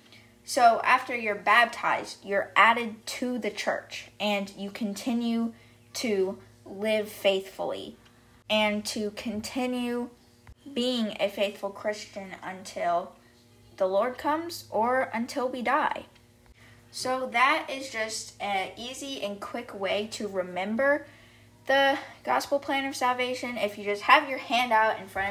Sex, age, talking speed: female, 10-29, 130 wpm